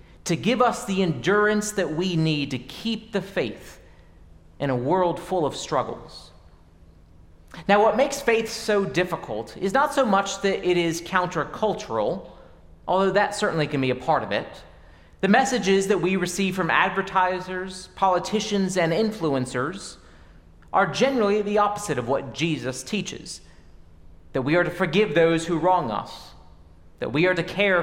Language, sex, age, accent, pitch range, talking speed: English, male, 30-49, American, 150-225 Hz, 155 wpm